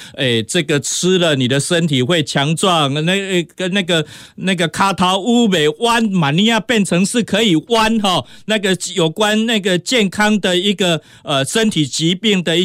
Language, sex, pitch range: Chinese, male, 145-200 Hz